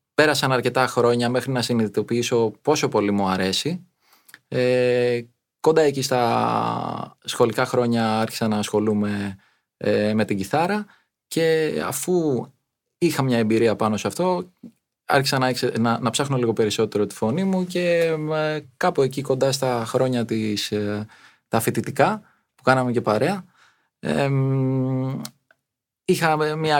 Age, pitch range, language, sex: 20-39, 115-155 Hz, Greek, male